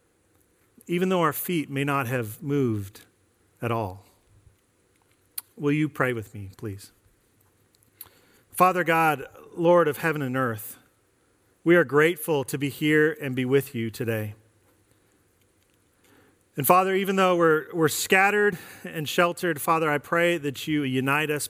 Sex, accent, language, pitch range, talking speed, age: male, American, English, 100-150 Hz, 140 wpm, 40-59